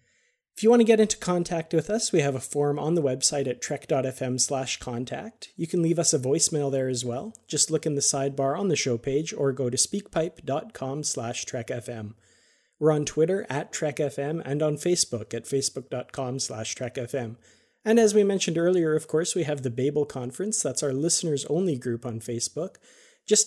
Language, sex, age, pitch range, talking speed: English, male, 30-49, 130-165 Hz, 190 wpm